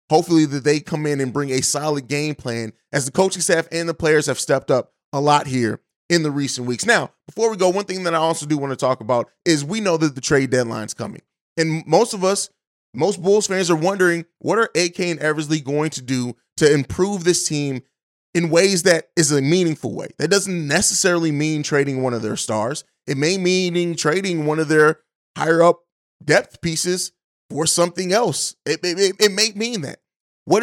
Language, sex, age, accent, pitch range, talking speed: English, male, 20-39, American, 140-180 Hz, 215 wpm